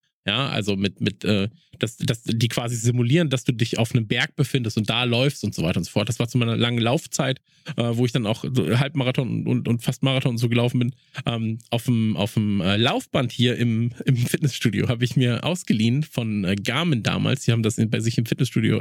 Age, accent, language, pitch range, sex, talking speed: 20-39, German, German, 115-140 Hz, male, 240 wpm